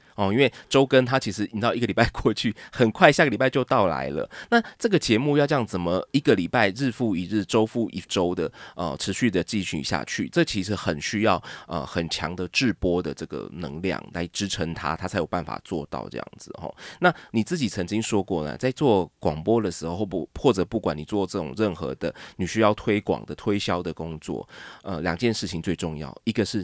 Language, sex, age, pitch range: Chinese, male, 20-39, 85-110 Hz